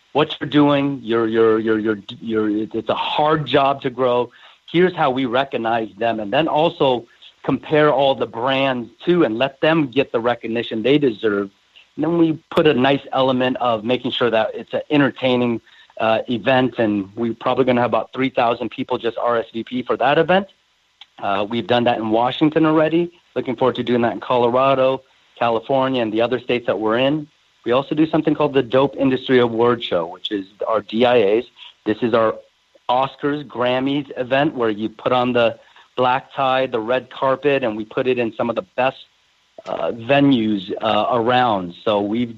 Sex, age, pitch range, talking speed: male, 40-59, 115-140 Hz, 180 wpm